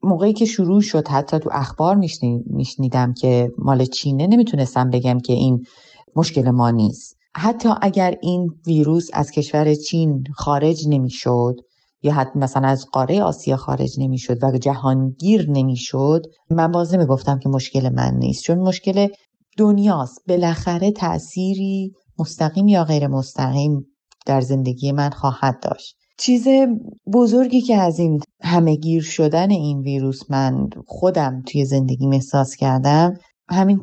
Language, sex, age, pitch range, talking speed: Persian, female, 30-49, 135-180 Hz, 140 wpm